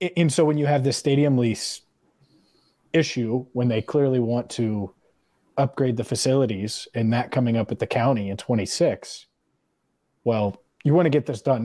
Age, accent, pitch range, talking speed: 30-49, American, 115-145 Hz, 170 wpm